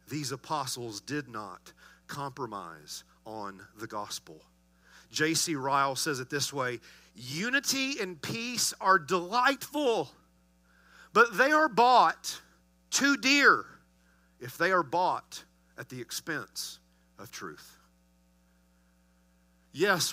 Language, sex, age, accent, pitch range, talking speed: English, male, 40-59, American, 110-170 Hz, 105 wpm